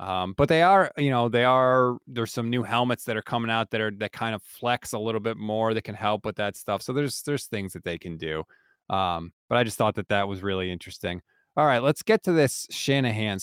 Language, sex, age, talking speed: English, male, 30-49, 255 wpm